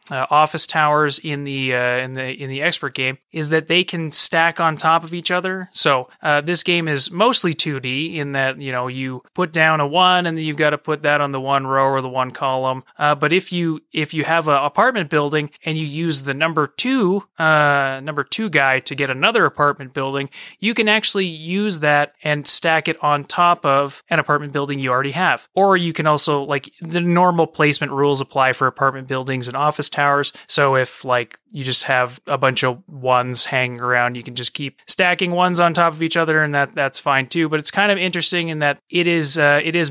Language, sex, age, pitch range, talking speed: English, male, 30-49, 135-170 Hz, 230 wpm